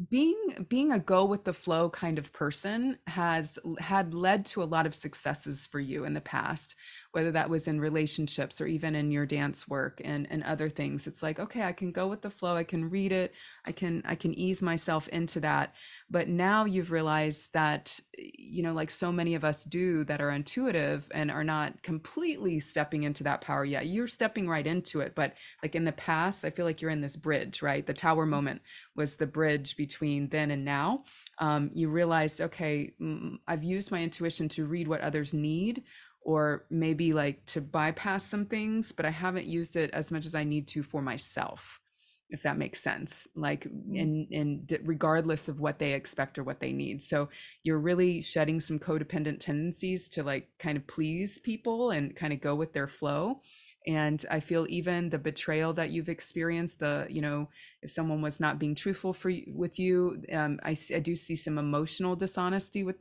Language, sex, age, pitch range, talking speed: English, female, 20-39, 150-180 Hz, 200 wpm